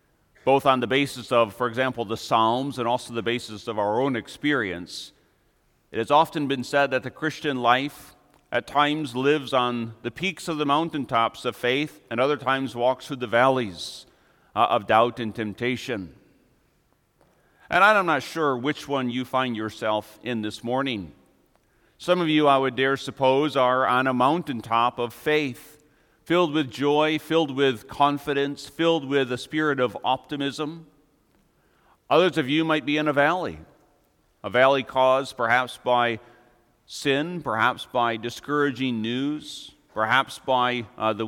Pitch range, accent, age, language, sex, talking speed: 120-145 Hz, American, 40-59, English, male, 155 wpm